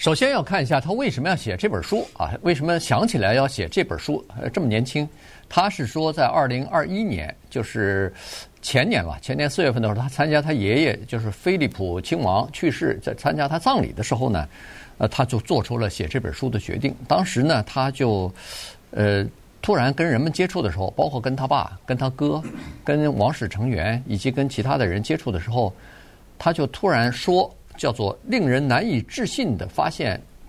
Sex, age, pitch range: male, 50-69, 105-145 Hz